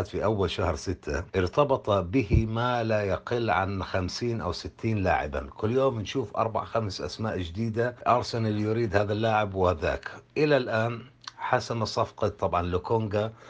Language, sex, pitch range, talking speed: Arabic, male, 95-120 Hz, 140 wpm